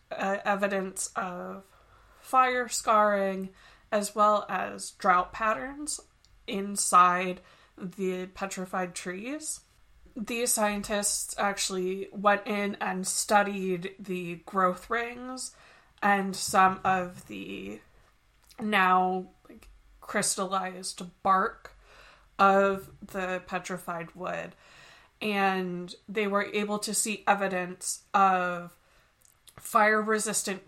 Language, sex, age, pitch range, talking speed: English, female, 20-39, 185-205 Hz, 85 wpm